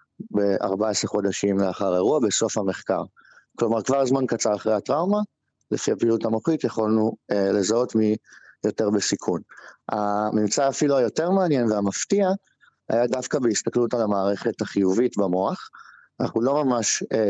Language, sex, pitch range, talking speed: Hebrew, male, 100-125 Hz, 130 wpm